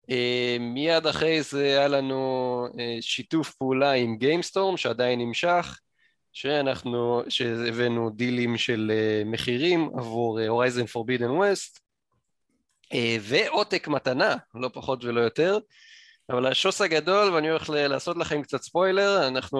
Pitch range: 120-155 Hz